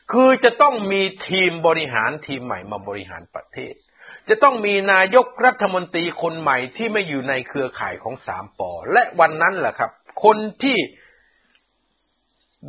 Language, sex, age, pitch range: Thai, male, 60-79, 135-210 Hz